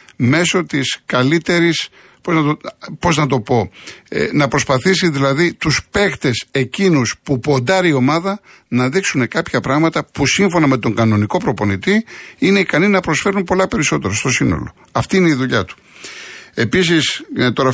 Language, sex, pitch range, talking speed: Greek, male, 130-175 Hz, 160 wpm